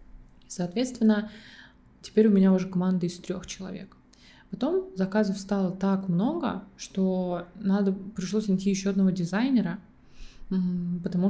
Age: 20-39